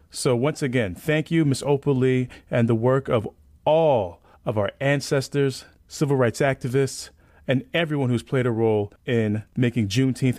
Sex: male